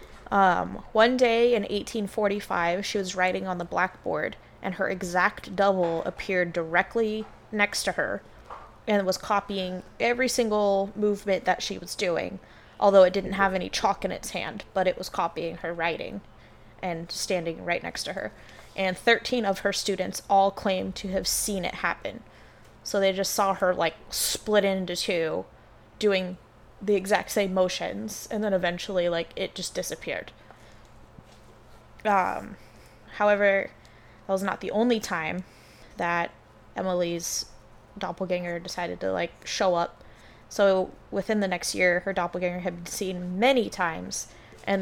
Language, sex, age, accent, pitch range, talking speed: English, female, 20-39, American, 175-205 Hz, 150 wpm